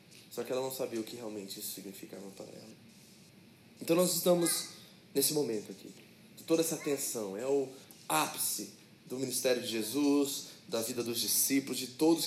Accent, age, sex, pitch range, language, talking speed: Brazilian, 20-39, male, 120-170 Hz, Portuguese, 165 wpm